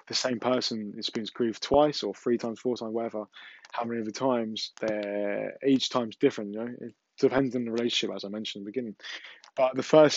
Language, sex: English, male